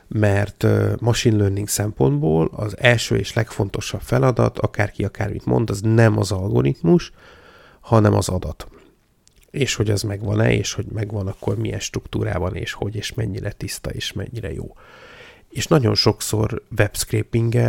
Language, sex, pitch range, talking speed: Hungarian, male, 100-115 Hz, 140 wpm